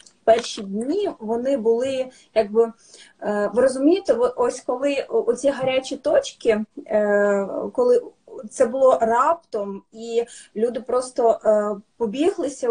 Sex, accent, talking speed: female, native, 95 wpm